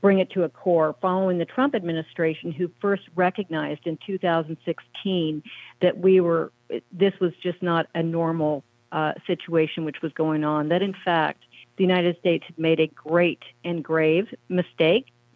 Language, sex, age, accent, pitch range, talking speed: English, female, 50-69, American, 160-180 Hz, 165 wpm